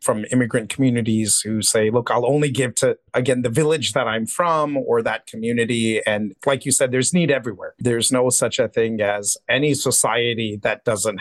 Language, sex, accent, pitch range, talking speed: English, male, American, 125-170 Hz, 195 wpm